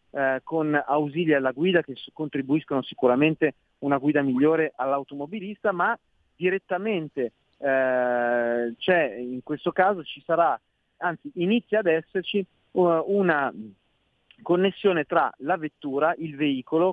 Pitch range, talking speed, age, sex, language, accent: 140-185 Hz, 115 wpm, 40-59, male, Italian, native